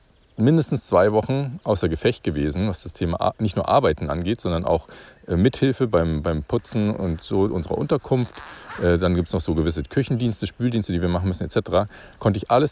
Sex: male